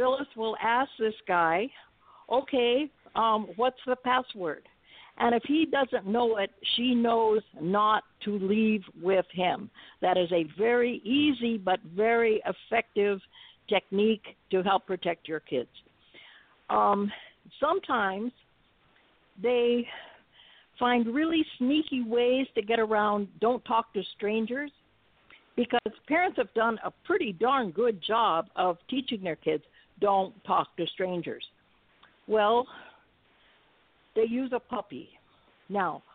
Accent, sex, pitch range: American, female, 205-255 Hz